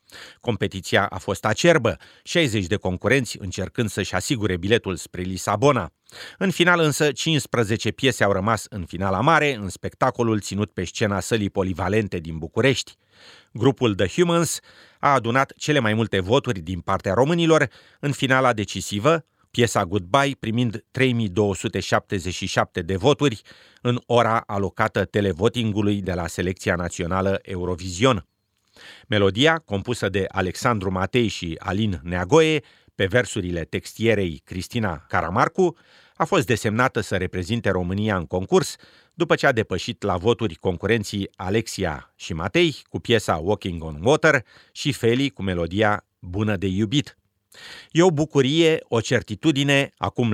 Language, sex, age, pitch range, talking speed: Romanian, male, 30-49, 95-130 Hz, 130 wpm